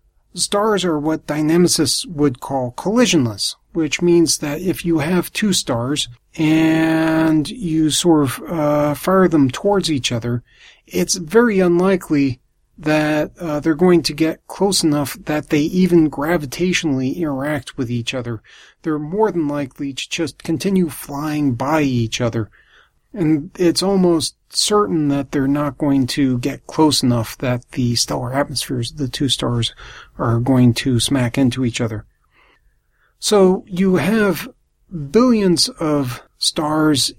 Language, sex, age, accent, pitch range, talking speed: English, male, 40-59, American, 135-175 Hz, 140 wpm